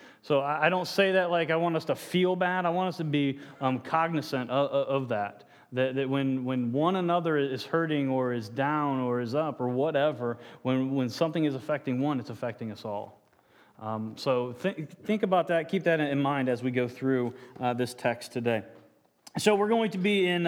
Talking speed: 210 wpm